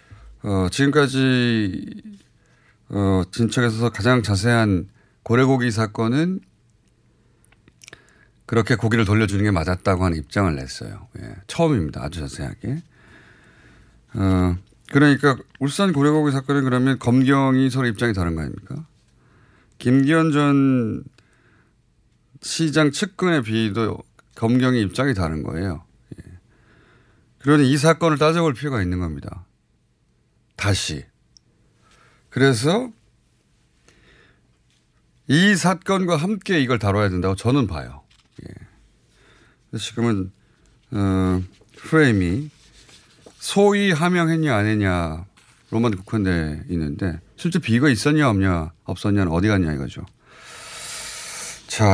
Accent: native